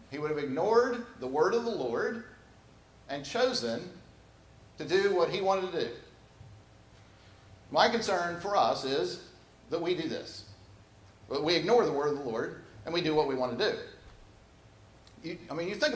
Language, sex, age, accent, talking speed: English, male, 50-69, American, 175 wpm